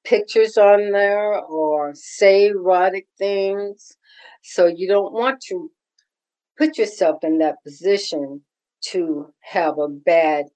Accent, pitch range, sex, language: American, 160-210 Hz, female, English